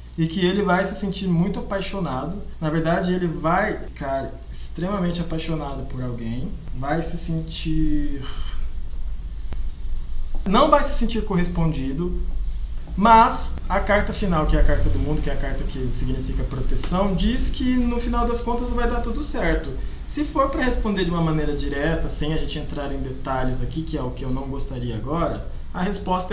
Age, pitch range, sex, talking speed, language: 20-39, 140-190 Hz, male, 175 wpm, Portuguese